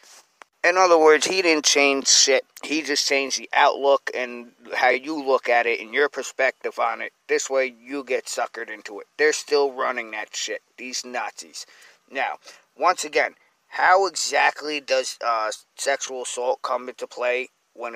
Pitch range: 130-165 Hz